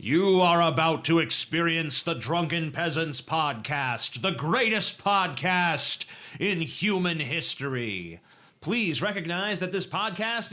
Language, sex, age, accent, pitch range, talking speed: English, male, 30-49, American, 140-185 Hz, 115 wpm